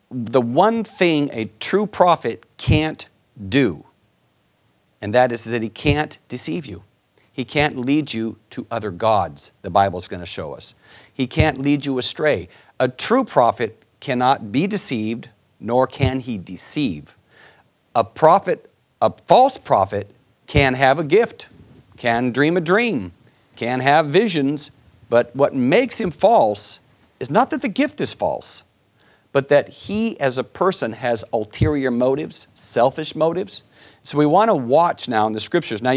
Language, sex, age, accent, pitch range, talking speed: English, male, 50-69, American, 115-155 Hz, 150 wpm